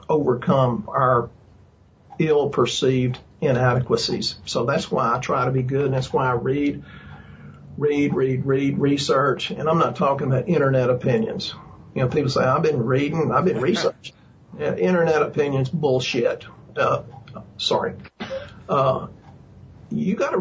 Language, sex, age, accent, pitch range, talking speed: English, male, 50-69, American, 130-180 Hz, 140 wpm